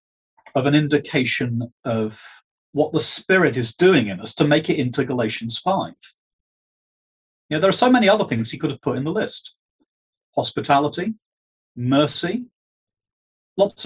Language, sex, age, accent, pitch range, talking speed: English, male, 40-59, British, 125-160 Hz, 150 wpm